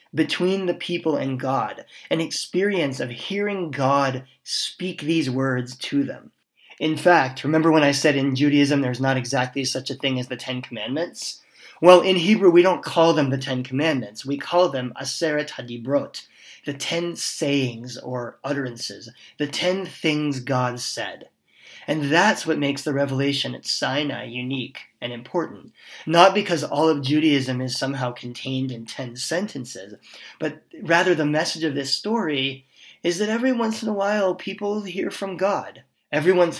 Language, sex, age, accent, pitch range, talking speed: English, male, 30-49, American, 130-160 Hz, 165 wpm